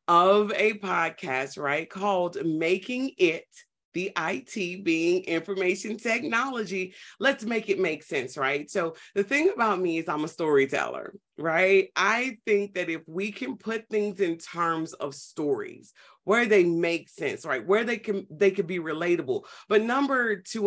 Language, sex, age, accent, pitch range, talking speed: English, female, 30-49, American, 175-225 Hz, 155 wpm